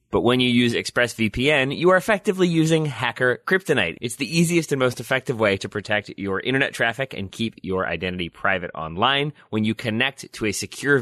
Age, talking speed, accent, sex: 30-49, 190 wpm, American, male